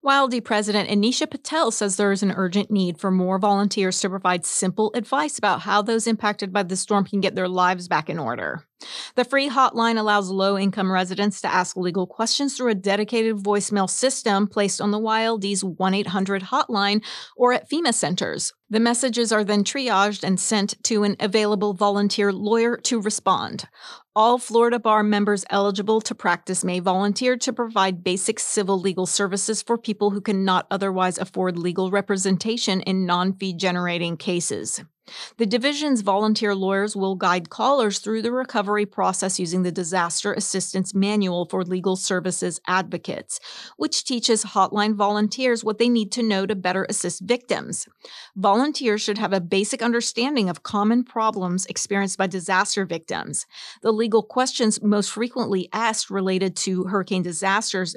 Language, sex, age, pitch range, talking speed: English, female, 30-49, 190-220 Hz, 155 wpm